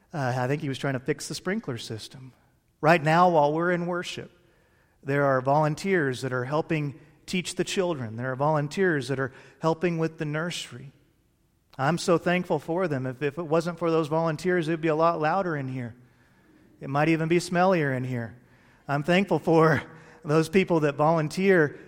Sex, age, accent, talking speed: male, 40-59, American, 190 wpm